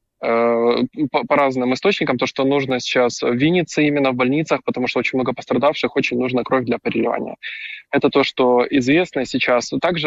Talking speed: 165 wpm